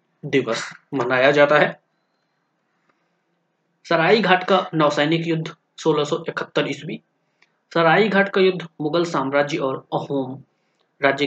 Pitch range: 145-180 Hz